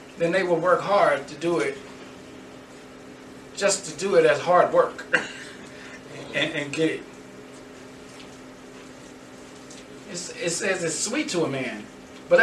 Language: English